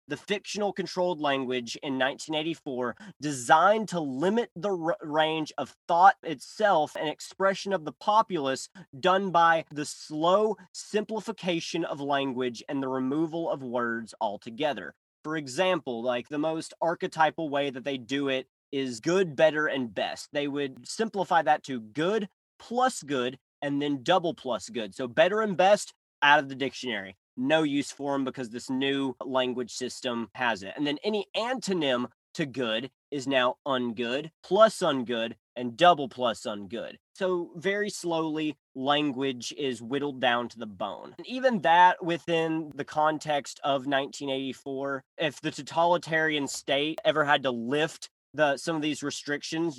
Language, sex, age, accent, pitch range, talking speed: English, male, 30-49, American, 130-170 Hz, 150 wpm